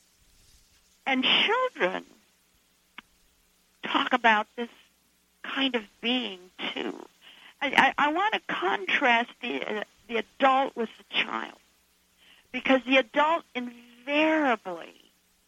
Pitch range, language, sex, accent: 175-250 Hz, English, female, American